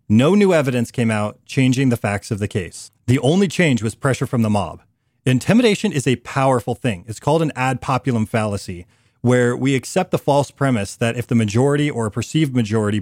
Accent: American